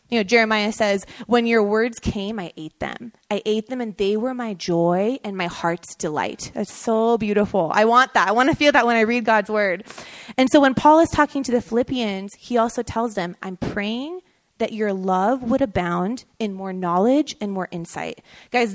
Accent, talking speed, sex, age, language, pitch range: American, 210 wpm, female, 20-39, English, 200-255 Hz